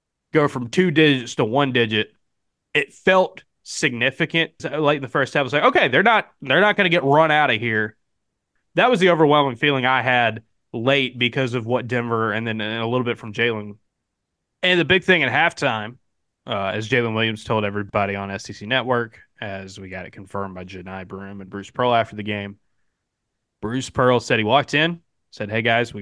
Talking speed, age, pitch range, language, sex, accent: 205 wpm, 20-39, 110-140 Hz, English, male, American